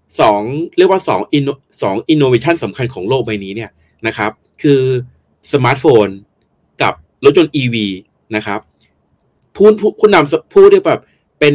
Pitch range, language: 110-155 Hz, Thai